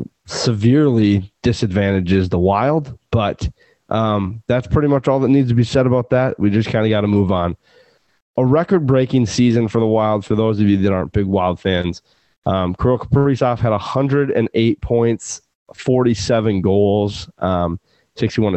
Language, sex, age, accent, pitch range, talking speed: English, male, 30-49, American, 100-120 Hz, 160 wpm